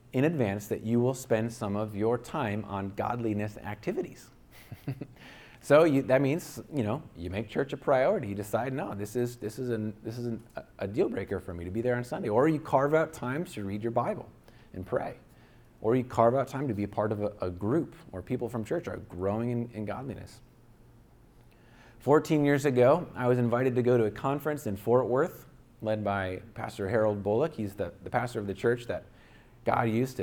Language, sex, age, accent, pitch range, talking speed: English, male, 30-49, American, 105-125 Hz, 210 wpm